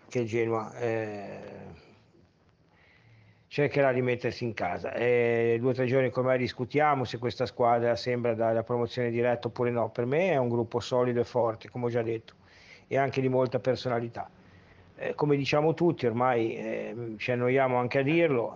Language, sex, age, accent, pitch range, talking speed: Italian, male, 50-69, native, 115-130 Hz, 175 wpm